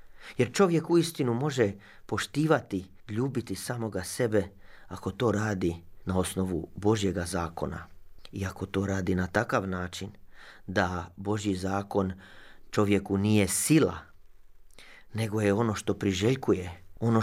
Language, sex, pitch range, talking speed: Croatian, male, 95-120 Hz, 120 wpm